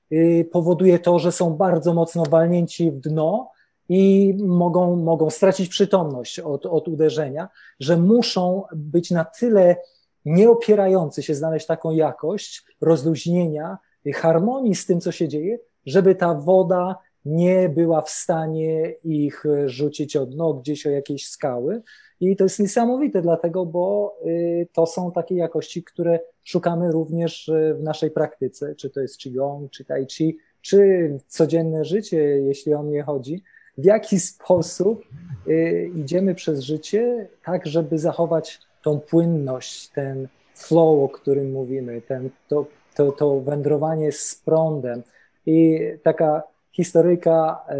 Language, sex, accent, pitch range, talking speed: Polish, male, native, 150-175 Hz, 130 wpm